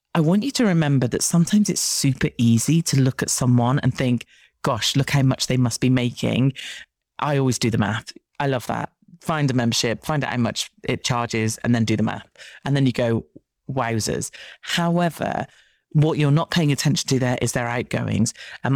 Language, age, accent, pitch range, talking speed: English, 30-49, British, 125-165 Hz, 200 wpm